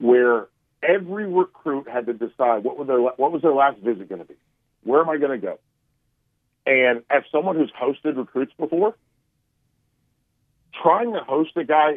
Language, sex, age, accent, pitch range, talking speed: English, male, 40-59, American, 120-155 Hz, 160 wpm